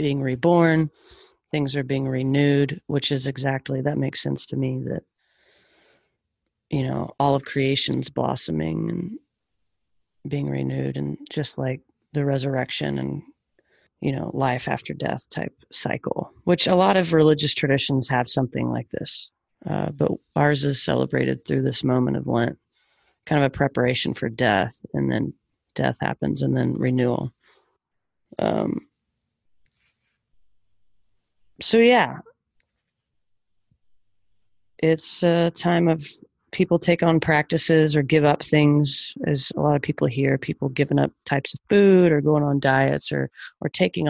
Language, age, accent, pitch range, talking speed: English, 30-49, American, 105-145 Hz, 140 wpm